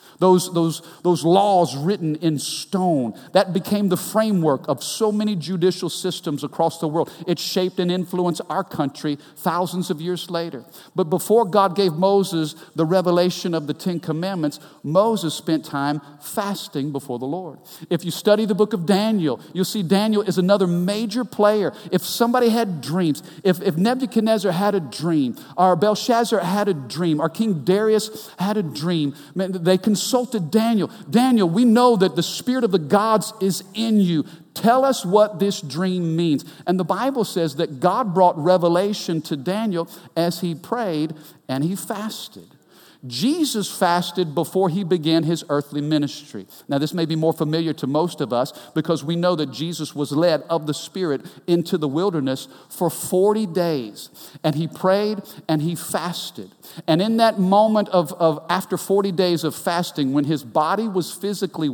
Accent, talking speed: American, 170 wpm